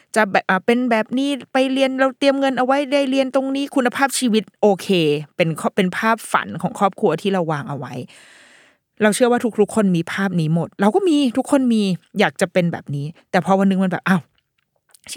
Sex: female